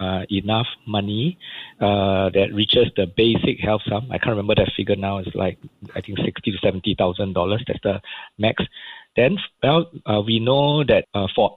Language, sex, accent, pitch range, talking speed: English, male, Malaysian, 100-115 Hz, 200 wpm